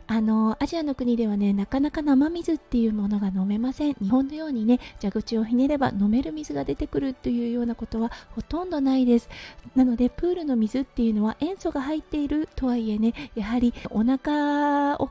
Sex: female